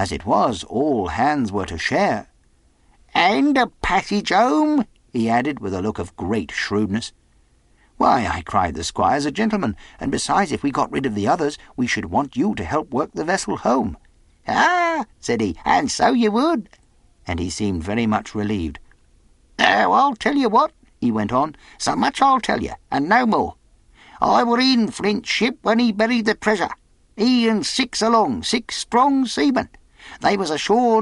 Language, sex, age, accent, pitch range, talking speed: English, male, 60-79, British, 185-240 Hz, 185 wpm